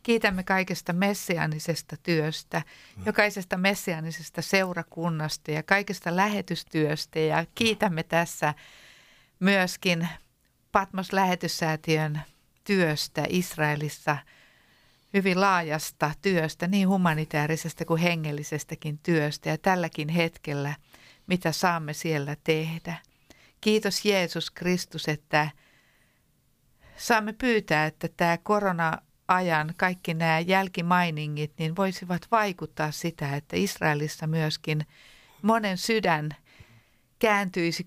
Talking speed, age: 85 wpm, 50-69